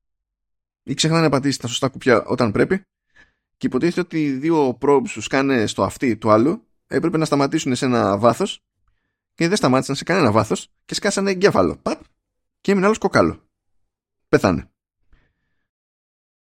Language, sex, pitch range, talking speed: Greek, male, 105-155 Hz, 155 wpm